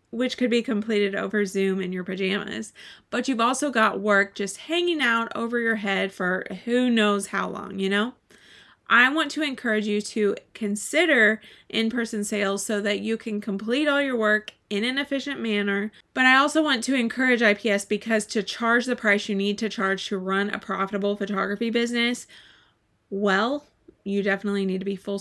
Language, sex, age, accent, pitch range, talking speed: English, female, 20-39, American, 200-235 Hz, 185 wpm